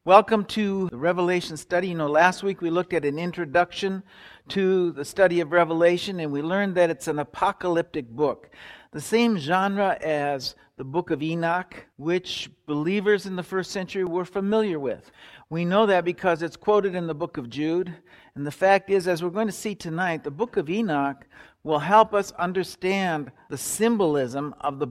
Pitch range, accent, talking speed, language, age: 160-195 Hz, American, 185 wpm, English, 60-79